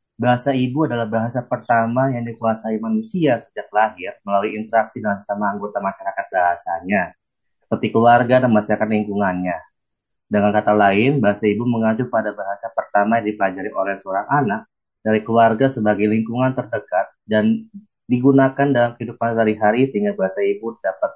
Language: Indonesian